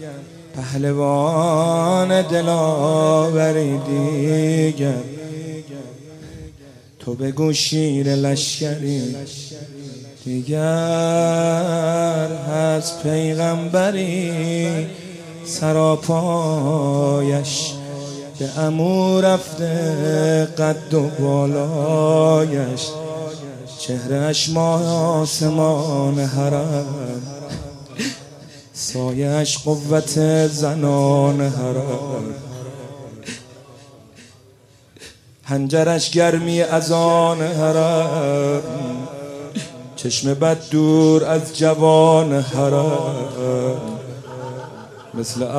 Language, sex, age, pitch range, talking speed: Persian, male, 30-49, 140-160 Hz, 45 wpm